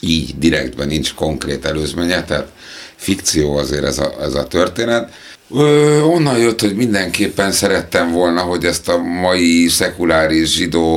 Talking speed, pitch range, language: 140 wpm, 80-90 Hz, Hungarian